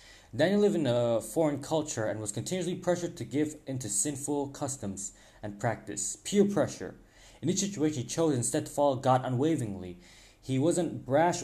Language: English